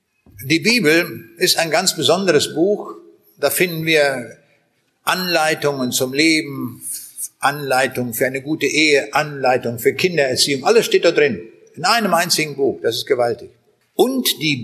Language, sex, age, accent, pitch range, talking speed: German, male, 60-79, German, 140-205 Hz, 140 wpm